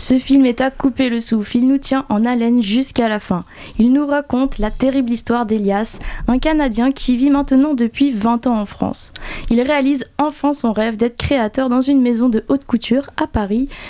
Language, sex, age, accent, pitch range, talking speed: French, female, 10-29, French, 225-275 Hz, 205 wpm